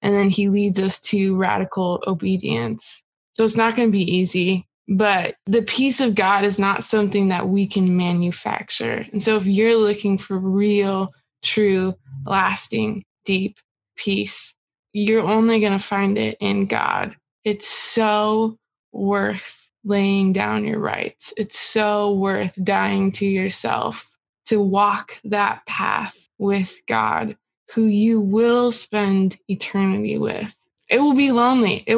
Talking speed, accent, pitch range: 145 wpm, American, 190-215 Hz